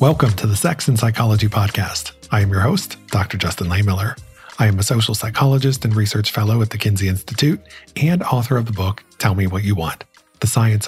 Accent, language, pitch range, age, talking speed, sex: American, English, 105-135 Hz, 40-59, 210 wpm, male